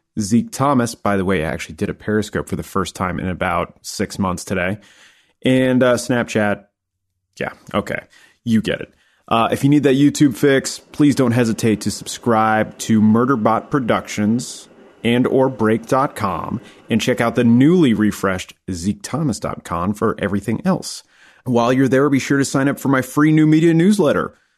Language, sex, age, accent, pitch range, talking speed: English, male, 30-49, American, 100-135 Hz, 170 wpm